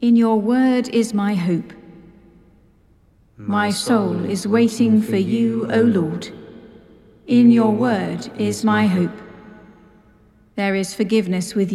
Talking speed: 125 wpm